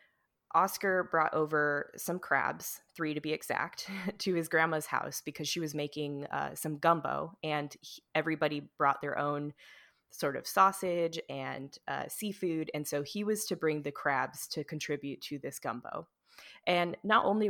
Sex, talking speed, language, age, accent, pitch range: female, 160 wpm, English, 20-39, American, 145-180 Hz